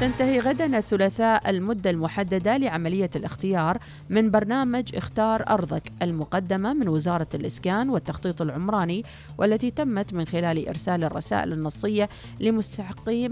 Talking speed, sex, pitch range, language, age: 115 wpm, female, 160-210 Hz, Arabic, 40-59